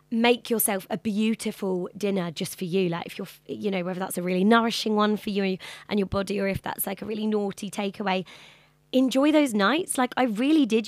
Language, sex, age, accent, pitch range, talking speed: English, female, 20-39, British, 175-220 Hz, 215 wpm